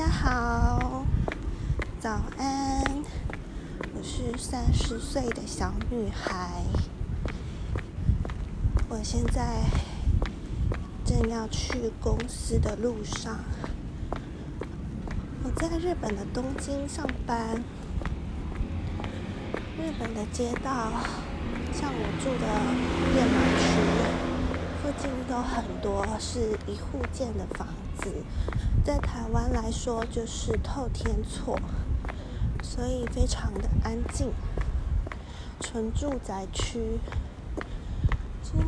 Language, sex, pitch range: Chinese, female, 80-100 Hz